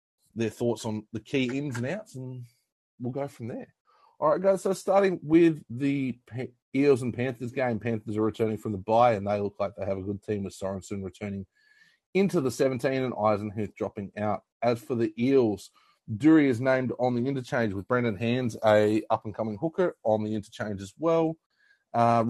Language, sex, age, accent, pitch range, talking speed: English, male, 30-49, Australian, 105-135 Hz, 190 wpm